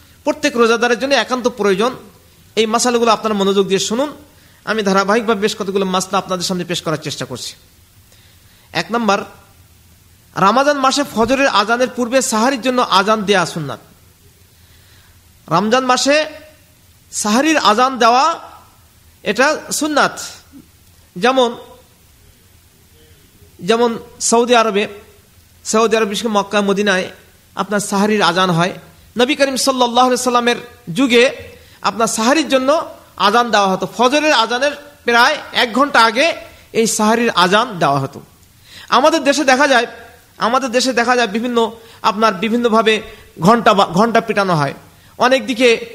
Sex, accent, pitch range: male, native, 195-245 Hz